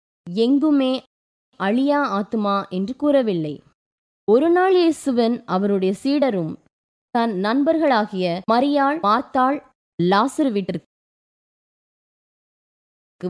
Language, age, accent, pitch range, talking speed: Tamil, 20-39, native, 190-275 Hz, 55 wpm